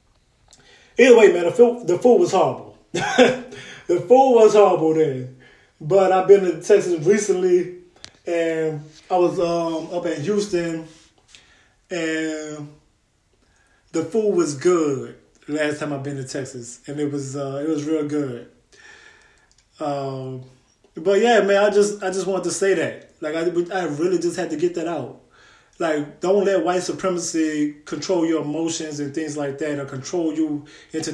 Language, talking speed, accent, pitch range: English, 160 wpm, American, 140-180 Hz